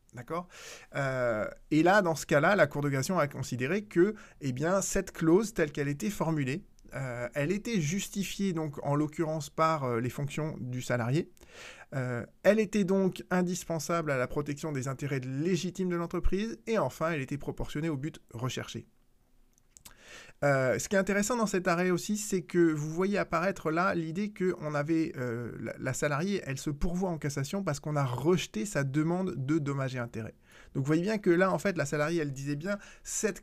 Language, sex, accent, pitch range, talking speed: French, male, French, 140-185 Hz, 190 wpm